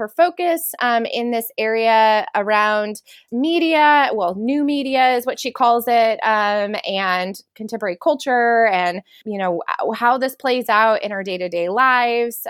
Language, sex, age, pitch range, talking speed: English, female, 20-39, 205-250 Hz, 150 wpm